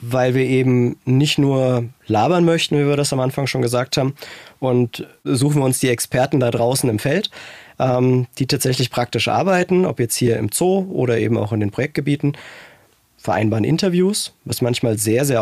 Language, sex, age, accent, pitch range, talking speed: German, male, 20-39, German, 115-135 Hz, 180 wpm